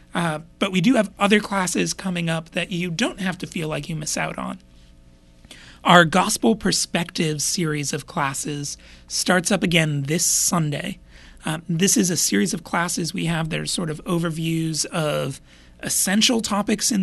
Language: English